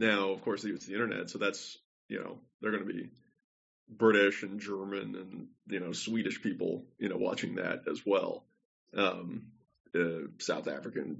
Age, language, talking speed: 20-39, English, 170 wpm